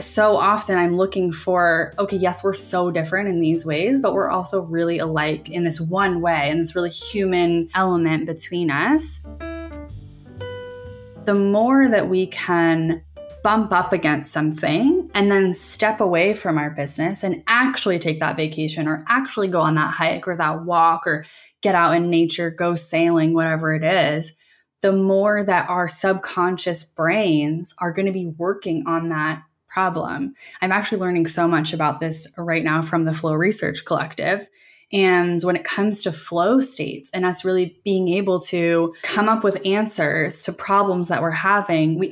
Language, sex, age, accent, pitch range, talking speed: English, female, 10-29, American, 160-190 Hz, 170 wpm